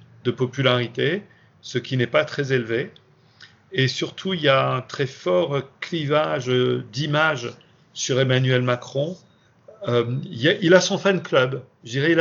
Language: Arabic